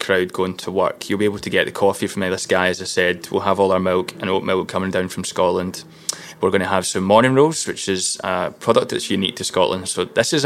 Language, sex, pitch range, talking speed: English, male, 95-105 Hz, 270 wpm